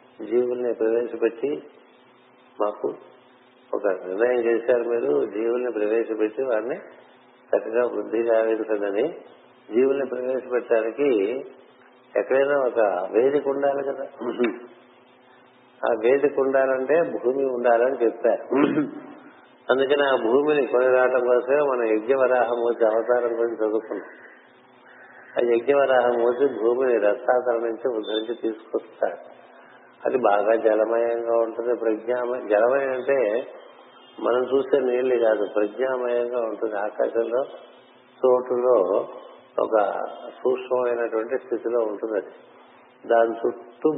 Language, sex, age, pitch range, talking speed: Telugu, male, 50-69, 115-130 Hz, 95 wpm